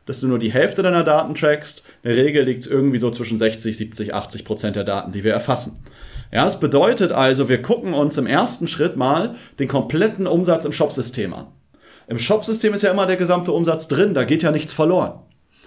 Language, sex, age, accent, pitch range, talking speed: German, male, 30-49, German, 120-155 Hz, 215 wpm